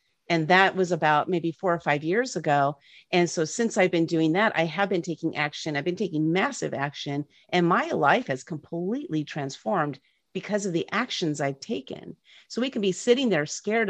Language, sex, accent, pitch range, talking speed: English, female, American, 160-205 Hz, 200 wpm